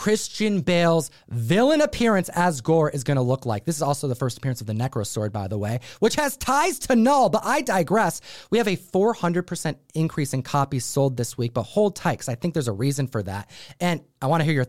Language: English